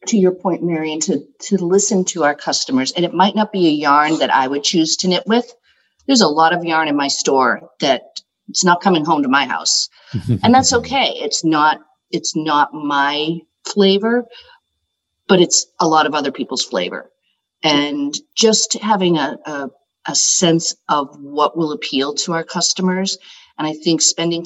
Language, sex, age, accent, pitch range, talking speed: English, female, 50-69, American, 145-185 Hz, 185 wpm